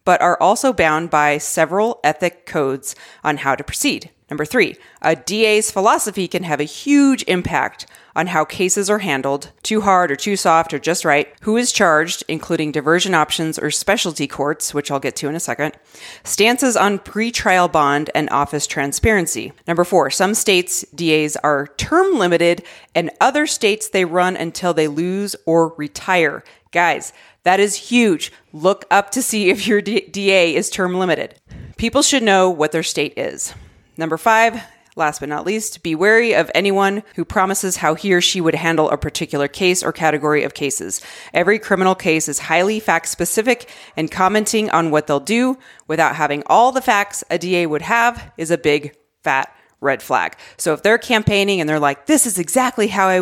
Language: English